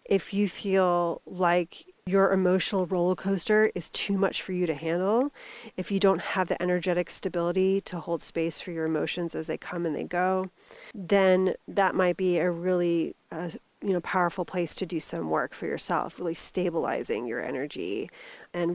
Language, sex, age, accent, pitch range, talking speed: English, female, 30-49, American, 170-195 Hz, 180 wpm